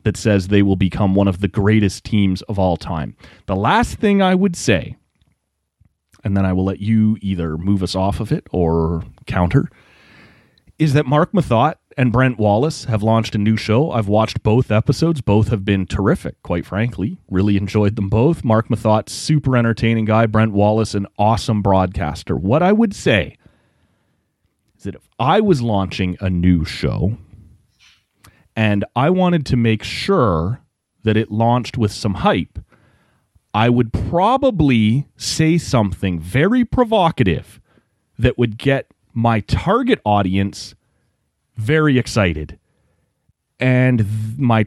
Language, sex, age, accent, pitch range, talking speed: English, male, 30-49, American, 100-130 Hz, 150 wpm